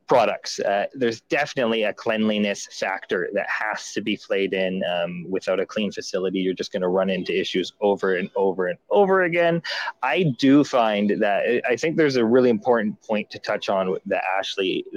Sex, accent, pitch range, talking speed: male, American, 100-125 Hz, 190 wpm